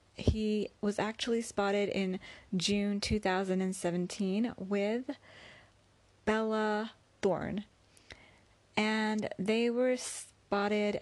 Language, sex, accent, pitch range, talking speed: English, female, American, 165-220 Hz, 75 wpm